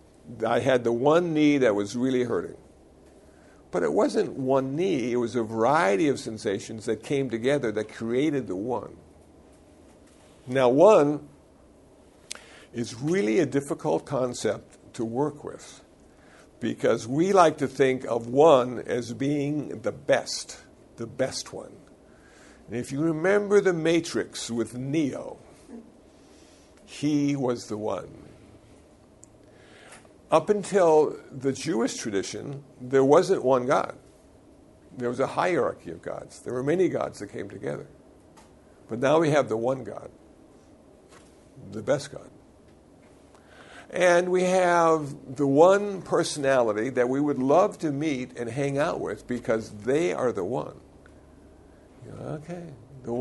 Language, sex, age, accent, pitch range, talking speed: English, male, 60-79, American, 120-155 Hz, 135 wpm